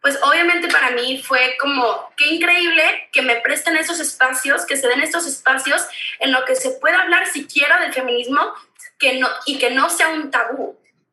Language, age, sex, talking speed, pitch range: Spanish, 20-39, female, 190 wpm, 230-300 Hz